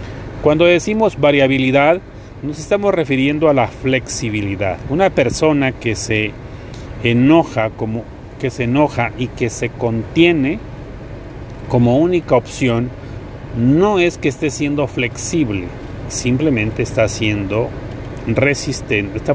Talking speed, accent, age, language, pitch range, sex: 95 wpm, Mexican, 40-59, Spanish, 115-145 Hz, male